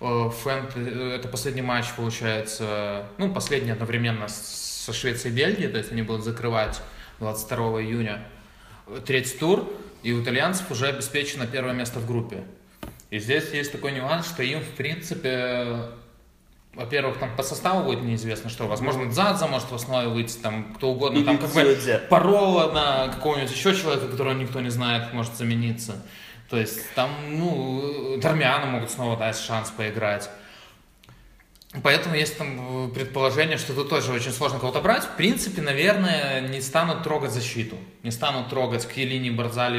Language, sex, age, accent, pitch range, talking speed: Russian, male, 20-39, native, 115-145 Hz, 155 wpm